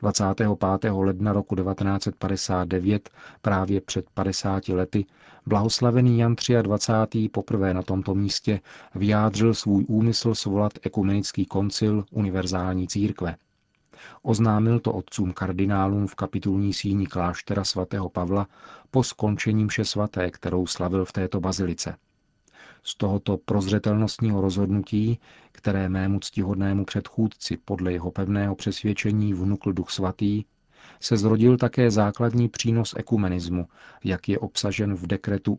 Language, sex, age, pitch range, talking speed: Czech, male, 40-59, 95-110 Hz, 115 wpm